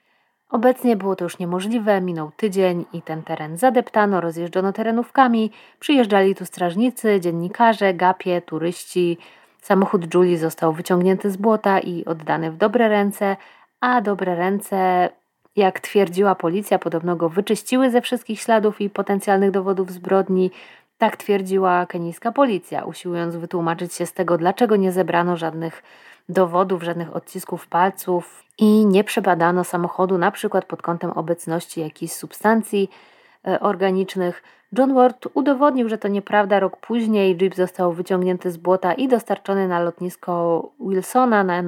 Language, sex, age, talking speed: Polish, female, 30-49, 135 wpm